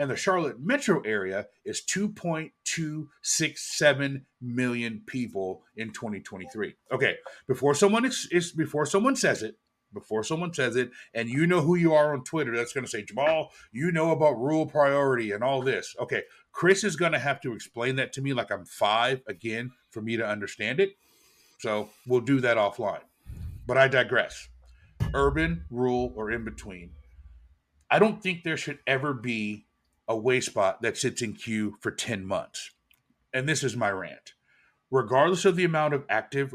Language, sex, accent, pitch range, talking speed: English, male, American, 110-150 Hz, 170 wpm